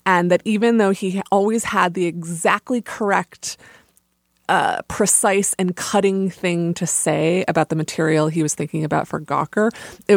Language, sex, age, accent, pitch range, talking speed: English, female, 20-39, American, 155-195 Hz, 160 wpm